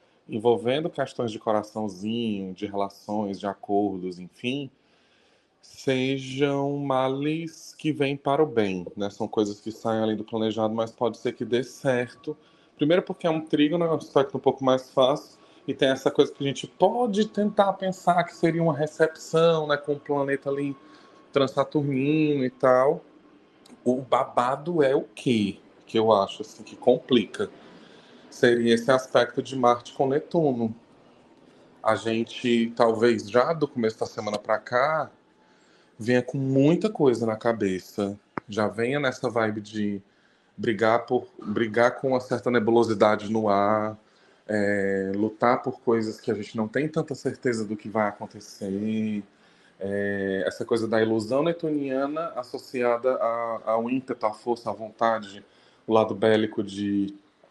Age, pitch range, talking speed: 20-39, 110-140 Hz, 150 wpm